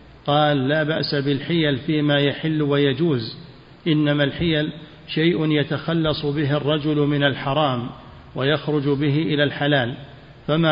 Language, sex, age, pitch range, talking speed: Arabic, male, 50-69, 145-155 Hz, 110 wpm